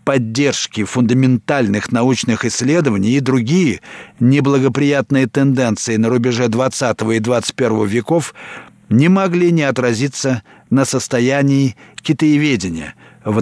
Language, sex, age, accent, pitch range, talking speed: Russian, male, 50-69, native, 120-150 Hz, 100 wpm